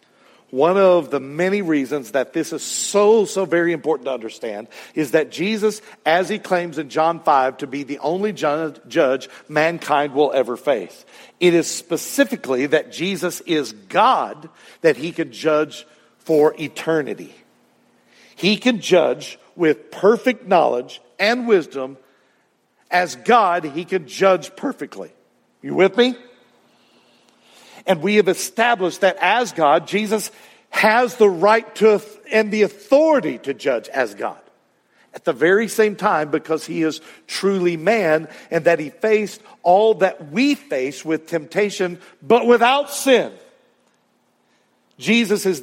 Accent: American